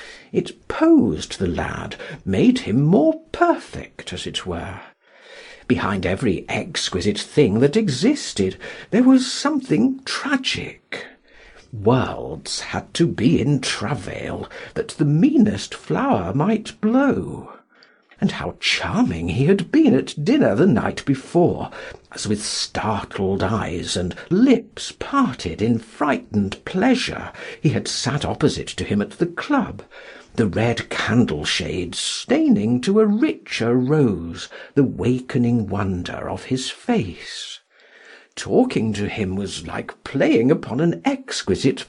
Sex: male